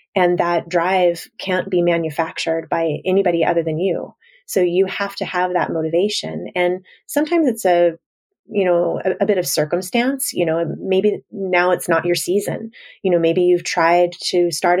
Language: English